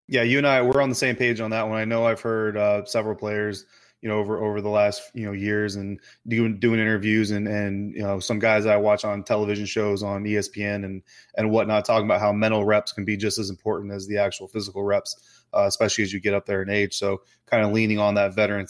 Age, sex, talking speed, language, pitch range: 20-39, male, 255 wpm, English, 105-120 Hz